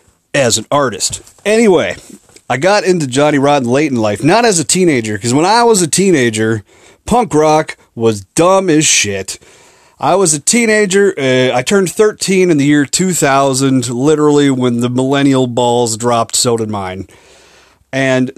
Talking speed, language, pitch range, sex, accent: 165 wpm, English, 130-185 Hz, male, American